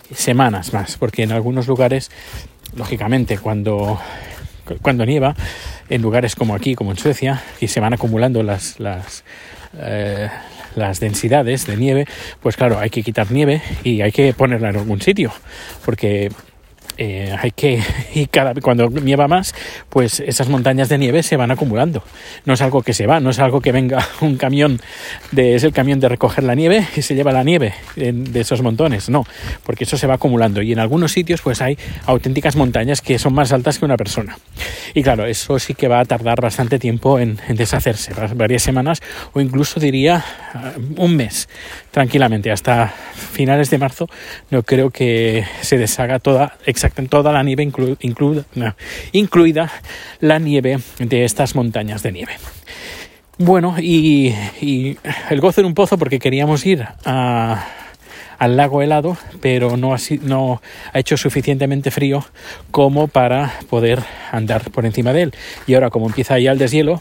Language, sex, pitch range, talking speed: Spanish, male, 115-145 Hz, 175 wpm